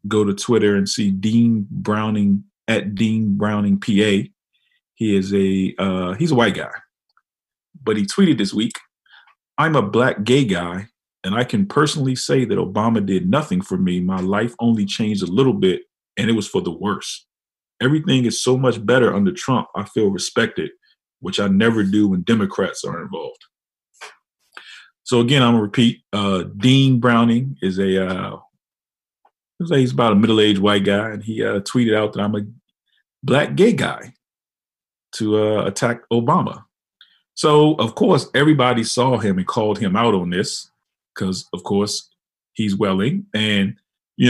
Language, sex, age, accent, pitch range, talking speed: English, male, 40-59, American, 100-130 Hz, 165 wpm